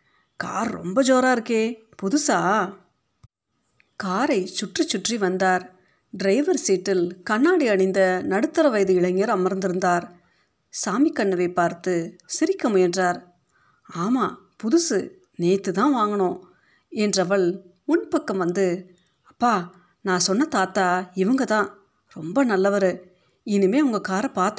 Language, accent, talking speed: Tamil, native, 100 wpm